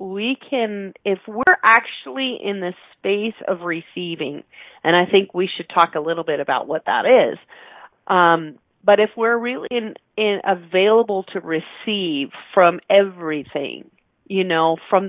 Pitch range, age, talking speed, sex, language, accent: 175-235 Hz, 40-59, 150 wpm, female, English, American